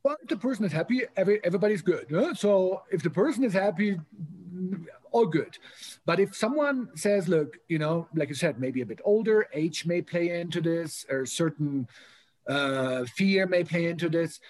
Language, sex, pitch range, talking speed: English, male, 150-195 Hz, 190 wpm